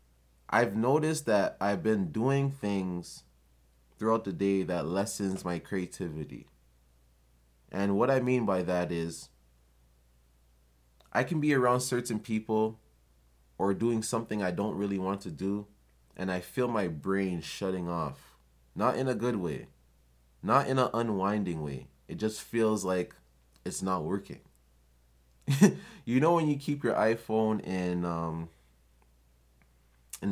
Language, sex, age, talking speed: English, male, 20-39, 135 wpm